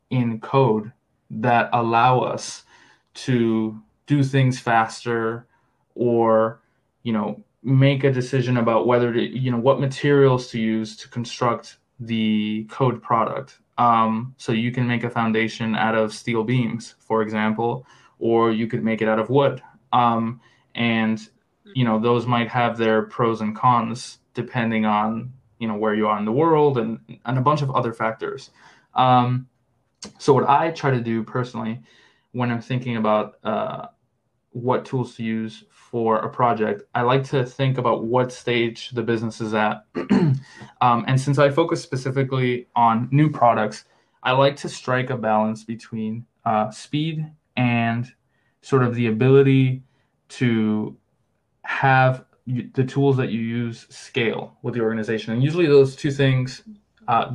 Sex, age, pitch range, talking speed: male, 20-39, 110-130 Hz, 155 wpm